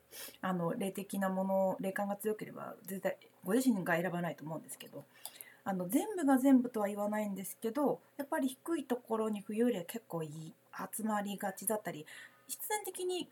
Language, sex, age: Japanese, female, 30-49